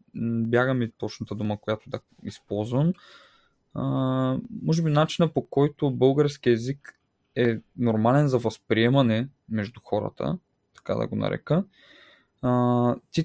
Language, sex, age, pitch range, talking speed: Bulgarian, male, 20-39, 115-140 Hz, 120 wpm